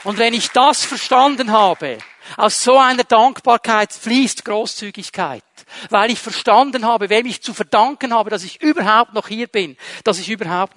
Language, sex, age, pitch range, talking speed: German, male, 50-69, 205-255 Hz, 165 wpm